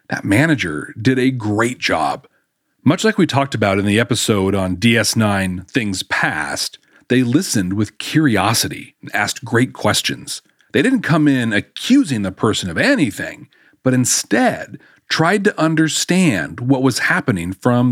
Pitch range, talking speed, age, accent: 105-155 Hz, 145 wpm, 40-59, American